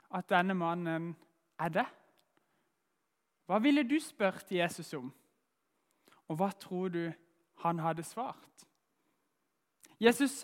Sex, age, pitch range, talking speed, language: male, 20-39, 170-230 Hz, 115 wpm, English